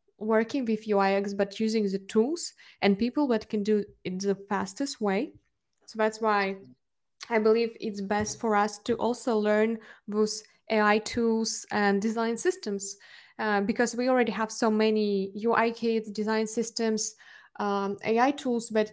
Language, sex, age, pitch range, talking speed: English, female, 20-39, 200-230 Hz, 155 wpm